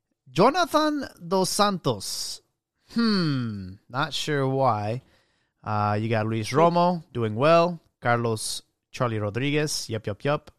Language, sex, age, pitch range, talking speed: English, male, 30-49, 110-150 Hz, 115 wpm